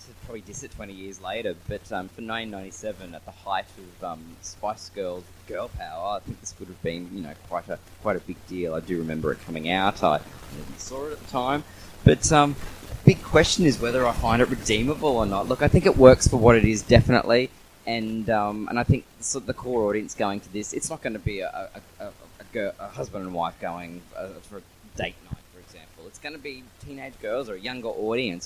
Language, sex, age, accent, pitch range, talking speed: English, male, 20-39, Australian, 90-125 Hz, 240 wpm